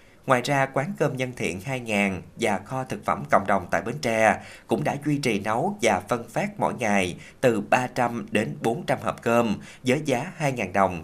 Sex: male